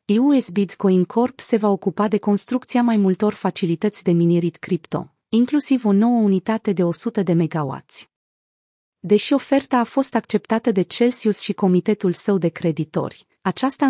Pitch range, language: 180-225 Hz, Romanian